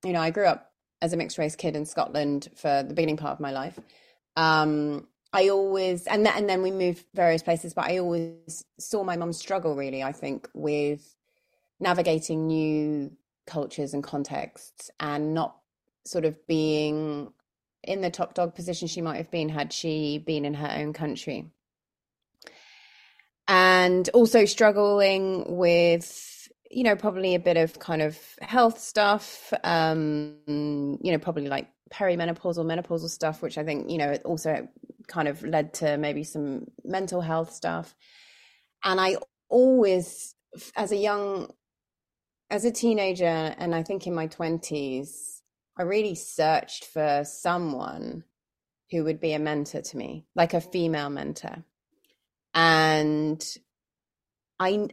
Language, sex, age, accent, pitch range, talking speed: English, female, 30-49, British, 150-190 Hz, 145 wpm